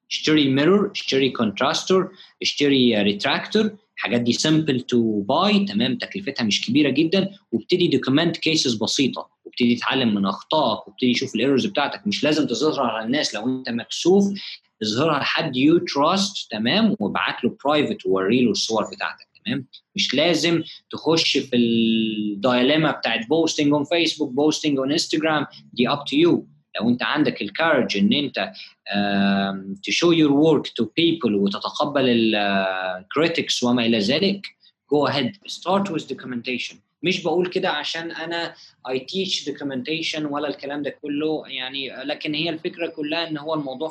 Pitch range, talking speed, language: 125-170 Hz, 145 wpm, Arabic